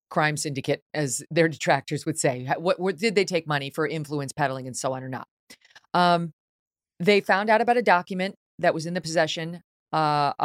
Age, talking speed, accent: 30-49, 195 wpm, American